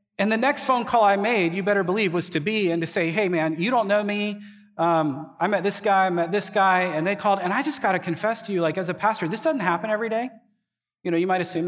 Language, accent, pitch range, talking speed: English, American, 165-215 Hz, 290 wpm